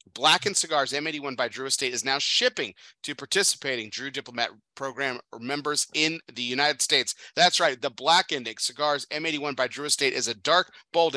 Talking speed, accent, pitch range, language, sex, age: 175 wpm, American, 125-165 Hz, English, male, 30-49